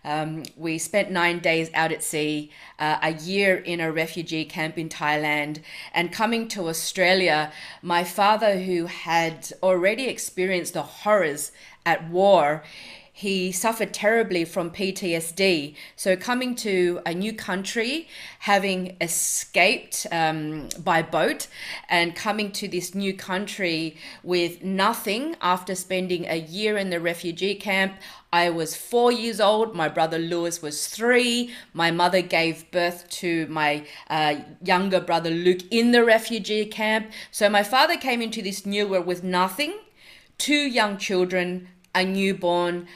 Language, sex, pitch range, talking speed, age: English, female, 170-210 Hz, 140 wpm, 30-49